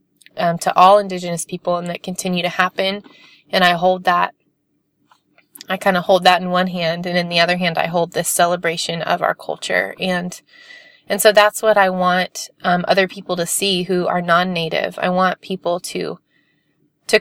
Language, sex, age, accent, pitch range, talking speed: English, female, 20-39, American, 170-190 Hz, 190 wpm